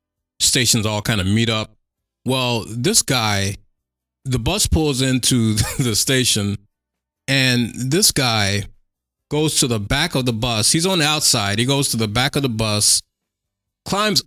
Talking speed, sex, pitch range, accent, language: 160 wpm, male, 105-135 Hz, American, English